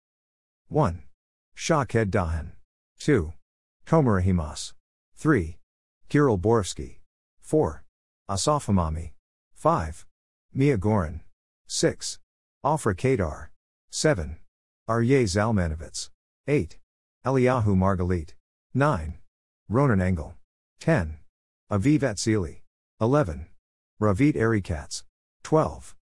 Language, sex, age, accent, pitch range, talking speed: English, male, 50-69, American, 80-115 Hz, 75 wpm